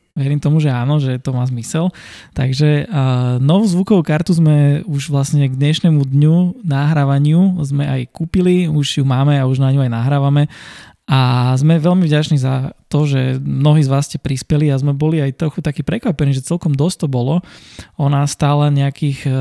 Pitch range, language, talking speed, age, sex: 130-150 Hz, Slovak, 180 wpm, 20-39, male